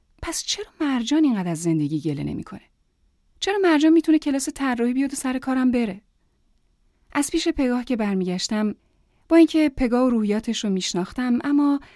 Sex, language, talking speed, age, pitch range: female, Persian, 155 wpm, 30-49, 205-295 Hz